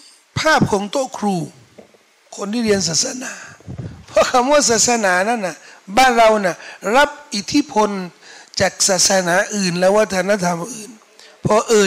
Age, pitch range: 60-79, 205-275 Hz